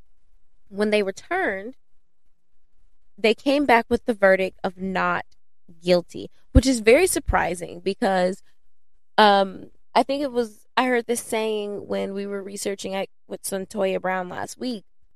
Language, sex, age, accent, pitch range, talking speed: English, female, 10-29, American, 175-220 Hz, 140 wpm